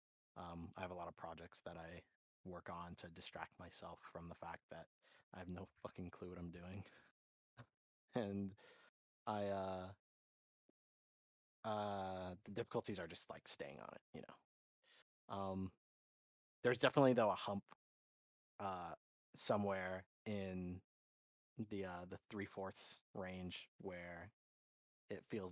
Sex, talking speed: male, 135 wpm